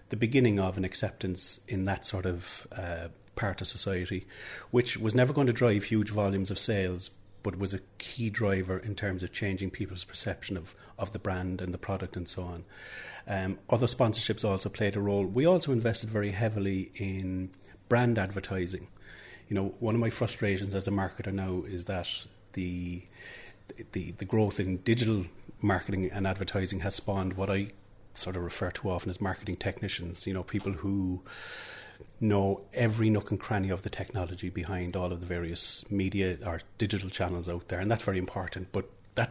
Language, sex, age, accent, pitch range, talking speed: English, male, 30-49, Irish, 95-105 Hz, 185 wpm